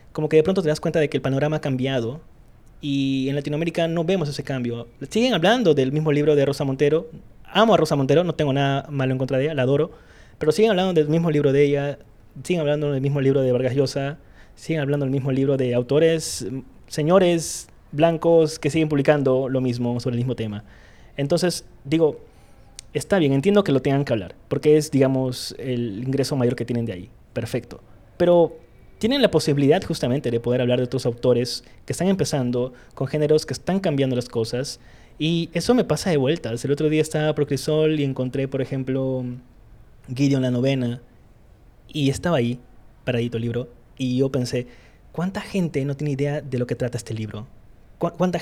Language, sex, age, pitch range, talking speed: Spanish, male, 20-39, 125-155 Hz, 195 wpm